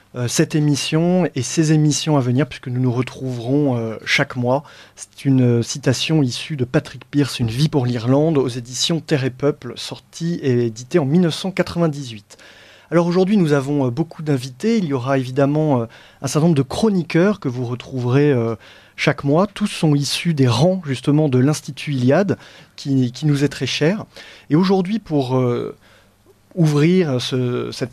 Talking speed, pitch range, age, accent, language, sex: 160 wpm, 130-165 Hz, 30-49, French, French, male